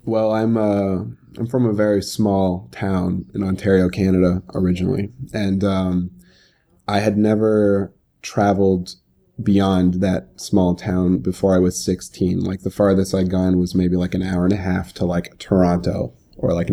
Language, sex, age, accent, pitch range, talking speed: English, male, 20-39, American, 95-110 Hz, 160 wpm